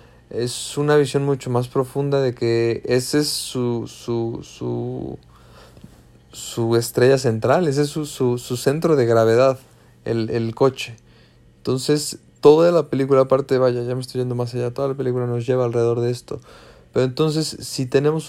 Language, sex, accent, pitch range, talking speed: Spanish, male, Mexican, 115-130 Hz, 170 wpm